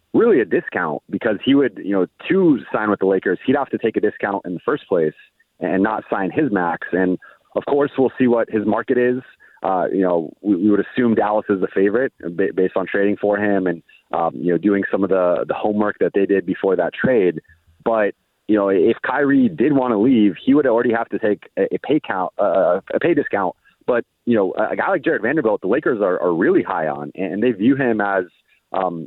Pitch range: 90-115 Hz